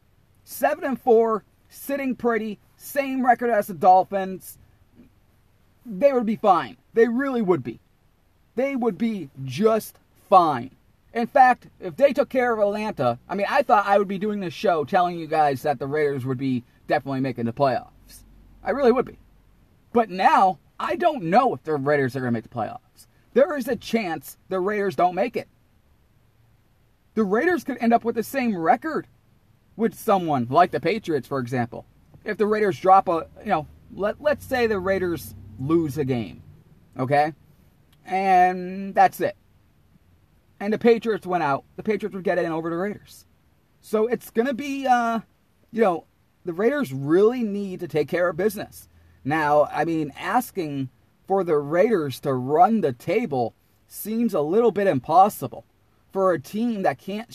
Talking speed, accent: 170 wpm, American